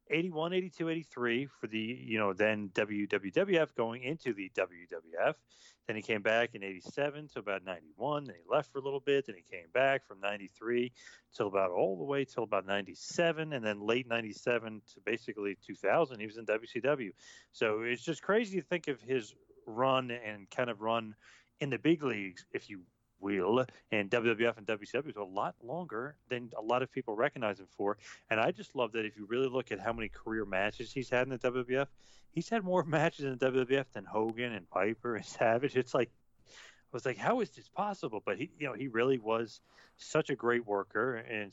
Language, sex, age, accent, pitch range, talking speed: English, male, 30-49, American, 105-140 Hz, 205 wpm